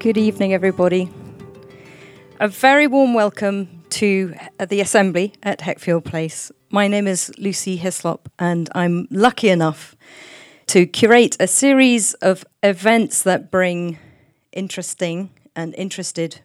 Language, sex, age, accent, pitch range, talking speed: English, female, 40-59, British, 165-205 Hz, 120 wpm